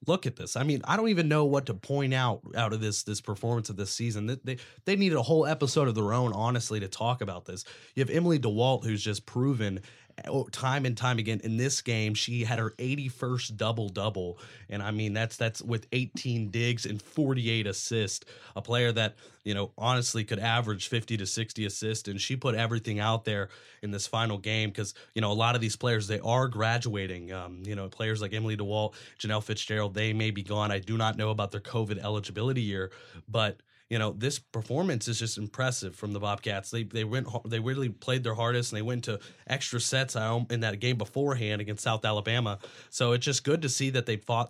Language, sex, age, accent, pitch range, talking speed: English, male, 30-49, American, 105-125 Hz, 220 wpm